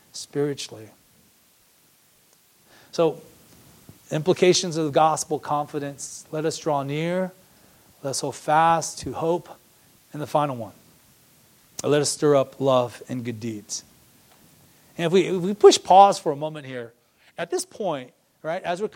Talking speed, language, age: 140 wpm, English, 40-59